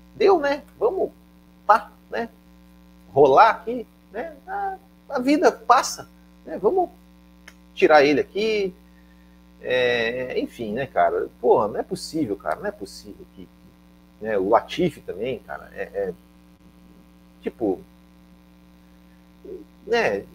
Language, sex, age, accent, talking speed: Portuguese, male, 40-59, Brazilian, 115 wpm